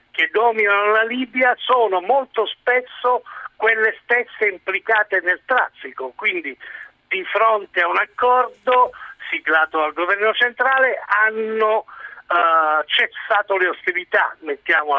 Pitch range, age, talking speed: 165-220 Hz, 50-69, 110 wpm